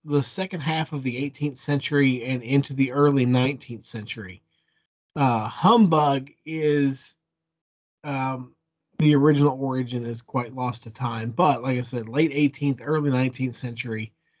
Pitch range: 125-160 Hz